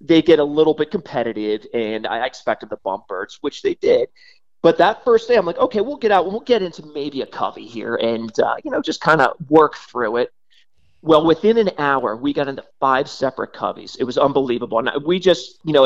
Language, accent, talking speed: English, American, 225 wpm